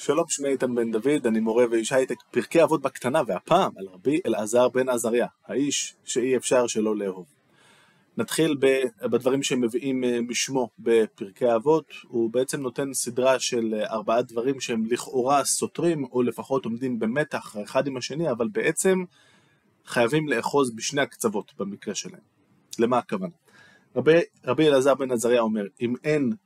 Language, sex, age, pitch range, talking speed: Hebrew, male, 20-39, 115-135 Hz, 145 wpm